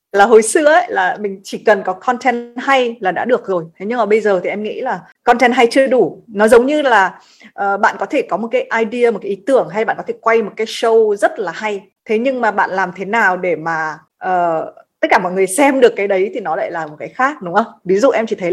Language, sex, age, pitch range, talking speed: Vietnamese, female, 20-39, 195-255 Hz, 270 wpm